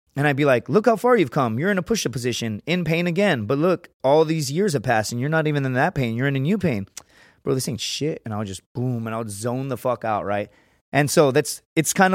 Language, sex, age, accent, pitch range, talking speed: English, male, 20-39, American, 120-155 Hz, 280 wpm